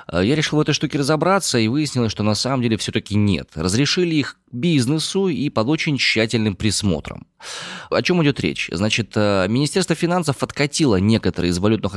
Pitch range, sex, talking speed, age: 95-140 Hz, male, 165 wpm, 20-39